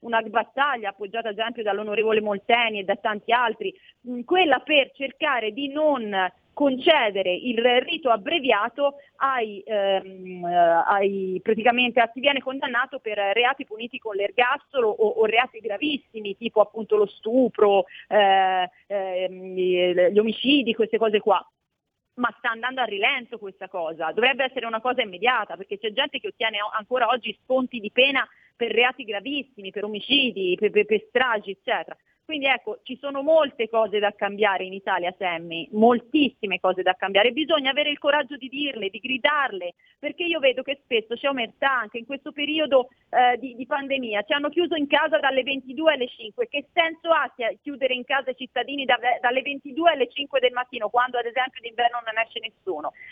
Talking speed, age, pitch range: 170 wpm, 30-49, 215-285 Hz